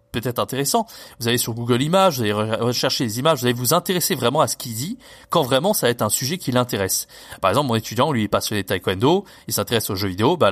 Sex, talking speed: male, 260 wpm